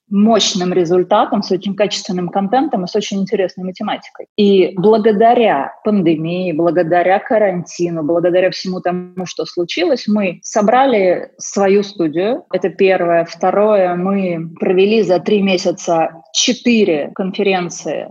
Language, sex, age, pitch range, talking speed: Russian, female, 20-39, 170-210 Hz, 115 wpm